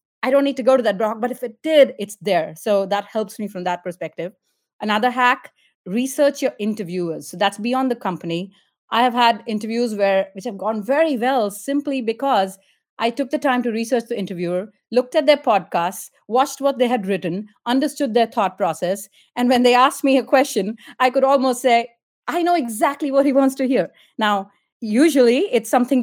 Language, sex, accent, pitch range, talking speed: English, female, Indian, 195-255 Hz, 200 wpm